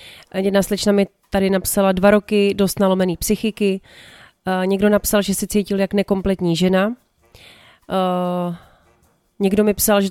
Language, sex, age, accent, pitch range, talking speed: Czech, female, 30-49, native, 185-210 Hz, 140 wpm